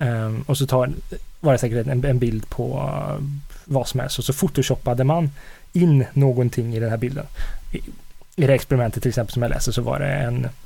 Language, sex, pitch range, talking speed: Swedish, male, 120-145 Hz, 195 wpm